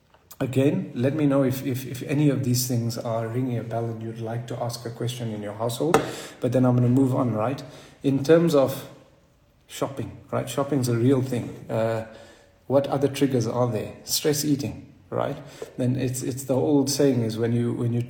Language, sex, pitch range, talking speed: English, male, 115-135 Hz, 205 wpm